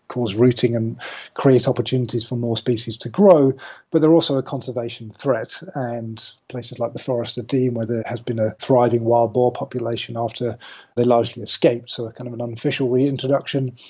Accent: British